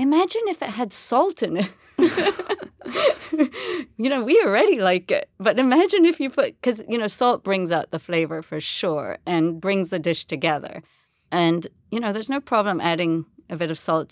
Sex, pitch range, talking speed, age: female, 170-220 Hz, 185 wpm, 40-59